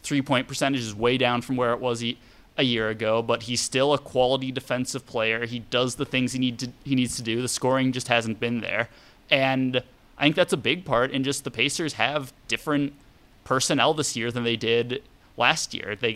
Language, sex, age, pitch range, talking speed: English, male, 20-39, 115-135 Hz, 210 wpm